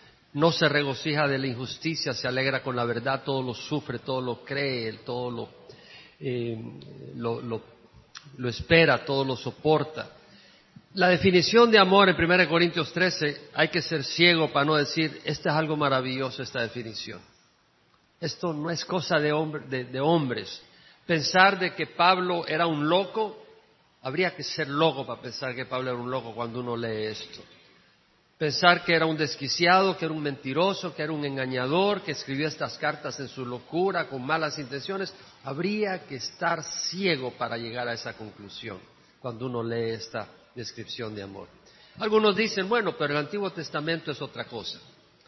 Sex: male